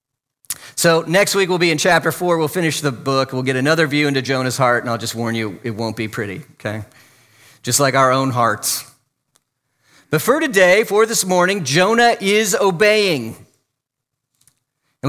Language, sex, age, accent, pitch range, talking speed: English, male, 40-59, American, 130-195 Hz, 175 wpm